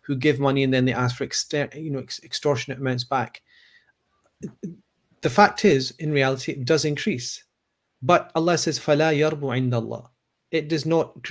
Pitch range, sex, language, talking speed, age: 135-160 Hz, male, English, 155 wpm, 30-49